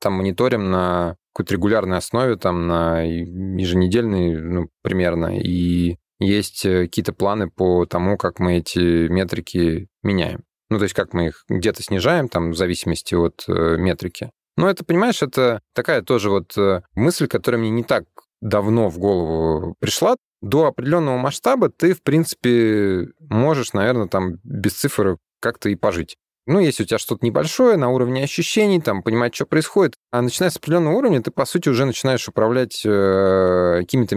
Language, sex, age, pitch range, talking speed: Russian, male, 20-39, 90-125 Hz, 160 wpm